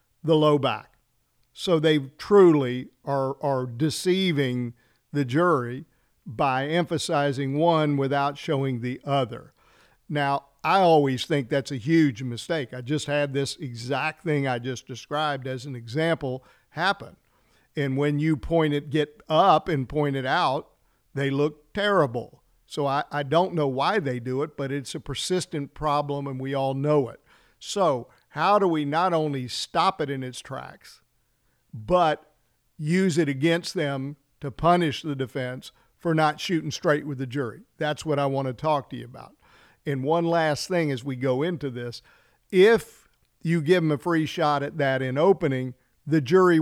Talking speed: 165 wpm